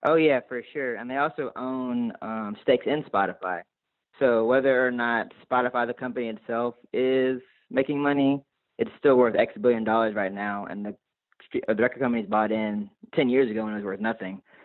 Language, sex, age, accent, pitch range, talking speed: English, male, 20-39, American, 110-130 Hz, 190 wpm